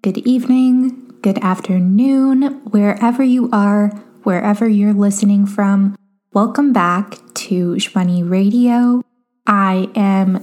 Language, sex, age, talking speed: English, female, 10-29, 105 wpm